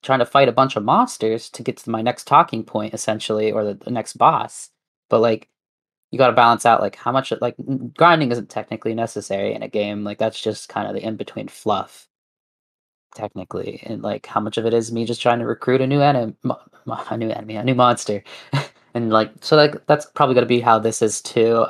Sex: male